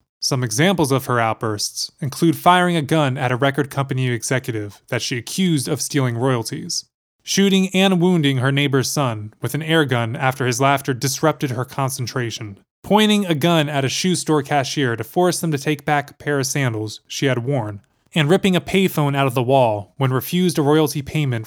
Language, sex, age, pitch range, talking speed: English, male, 20-39, 125-155 Hz, 195 wpm